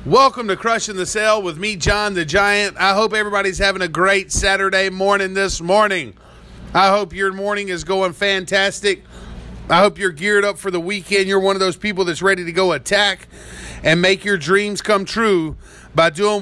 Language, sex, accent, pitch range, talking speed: English, male, American, 175-200 Hz, 195 wpm